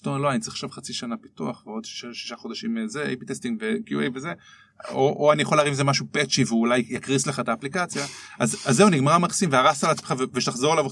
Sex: male